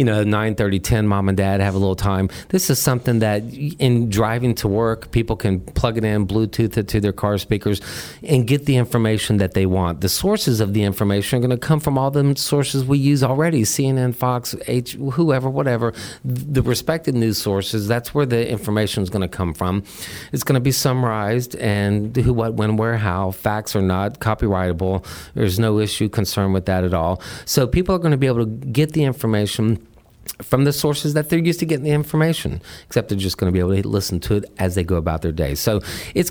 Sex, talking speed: male, 225 wpm